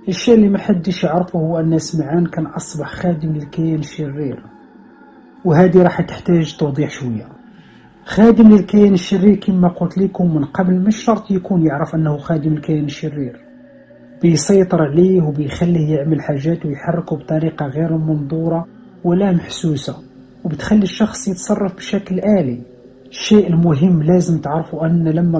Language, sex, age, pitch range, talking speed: Arabic, male, 40-59, 155-185 Hz, 130 wpm